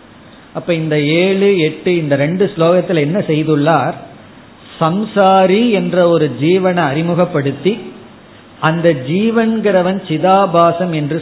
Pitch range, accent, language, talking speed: 145-190 Hz, native, Tamil, 95 wpm